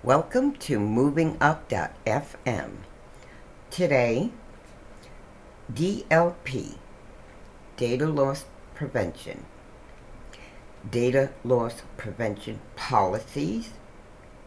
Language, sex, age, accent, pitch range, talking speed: English, female, 60-79, American, 110-155 Hz, 50 wpm